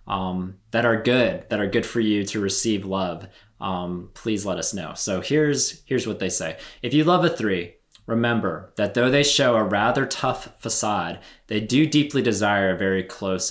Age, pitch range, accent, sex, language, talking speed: 20-39, 100-120 Hz, American, male, English, 195 wpm